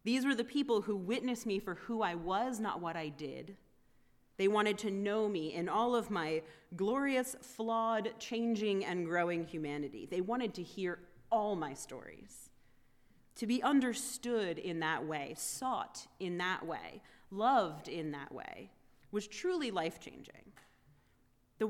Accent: American